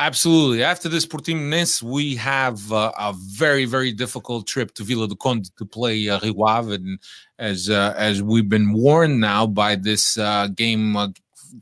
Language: English